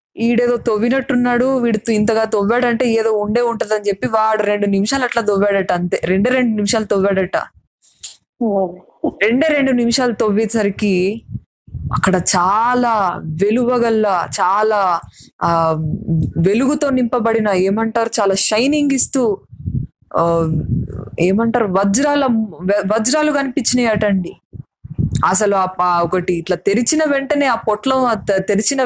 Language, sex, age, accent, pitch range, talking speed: Telugu, female, 20-39, native, 195-245 Hz, 100 wpm